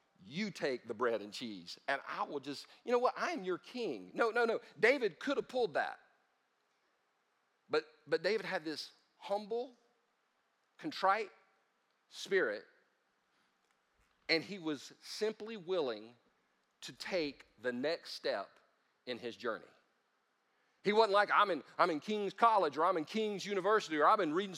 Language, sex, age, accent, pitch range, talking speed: English, male, 40-59, American, 165-225 Hz, 155 wpm